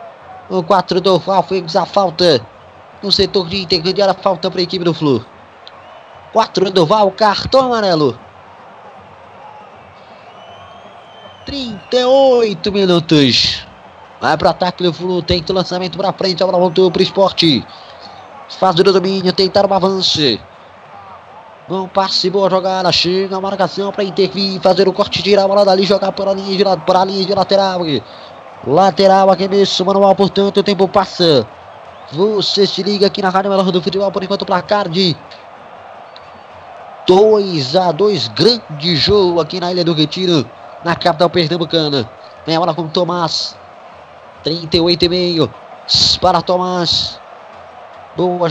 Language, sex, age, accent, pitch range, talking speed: Portuguese, male, 20-39, Brazilian, 175-195 Hz, 145 wpm